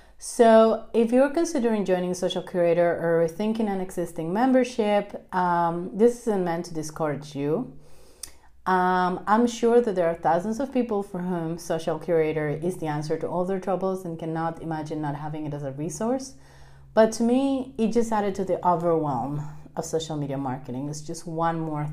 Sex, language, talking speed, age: female, English, 180 wpm, 30-49